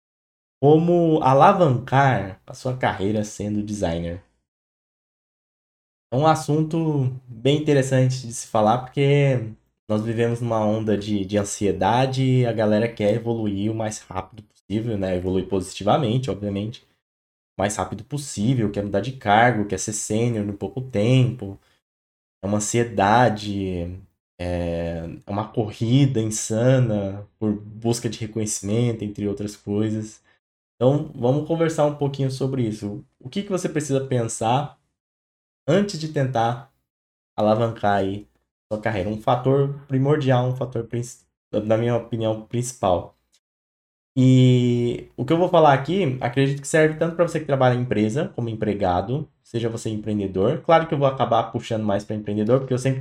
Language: Portuguese